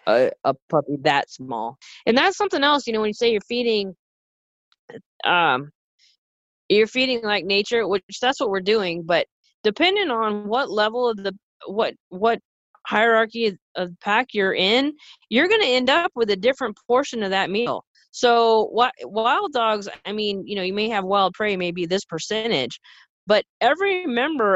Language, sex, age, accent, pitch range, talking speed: English, female, 20-39, American, 180-235 Hz, 175 wpm